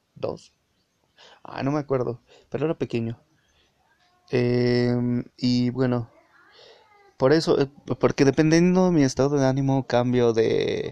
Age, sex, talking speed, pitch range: 30-49, male, 120 wpm, 115-130 Hz